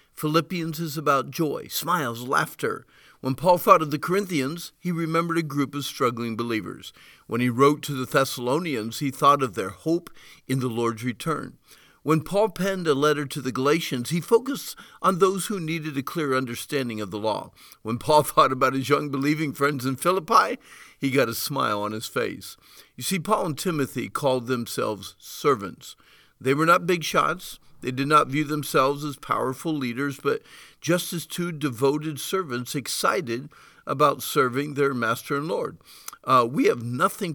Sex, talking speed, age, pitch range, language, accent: male, 175 wpm, 50-69, 130-165 Hz, English, American